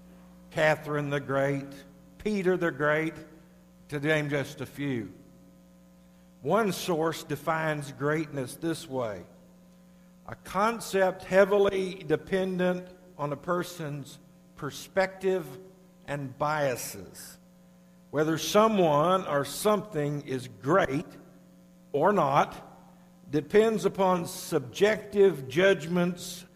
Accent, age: American, 60-79